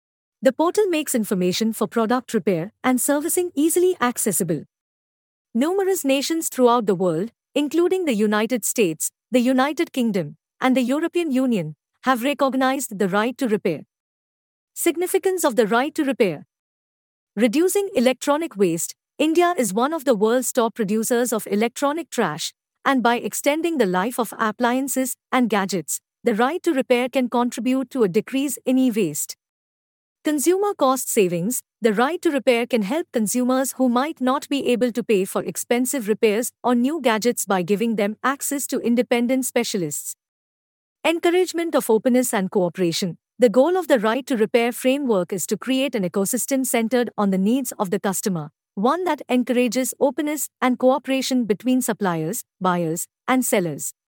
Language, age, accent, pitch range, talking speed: English, 50-69, Indian, 210-270 Hz, 155 wpm